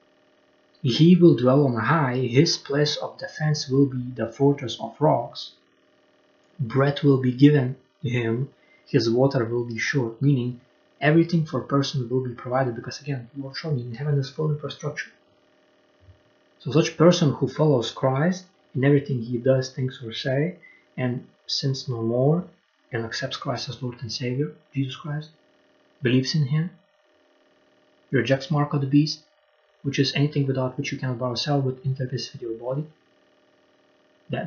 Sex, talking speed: male, 160 wpm